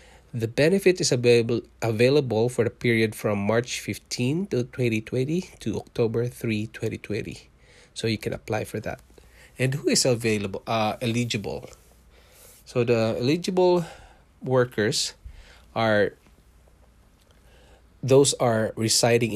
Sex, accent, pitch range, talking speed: male, Filipino, 105-120 Hz, 110 wpm